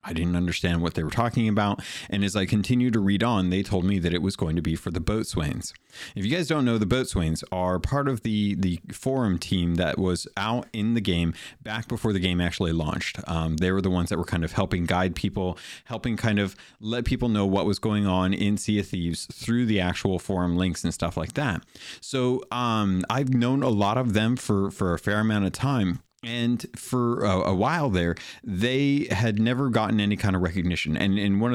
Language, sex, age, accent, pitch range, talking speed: English, male, 30-49, American, 90-110 Hz, 225 wpm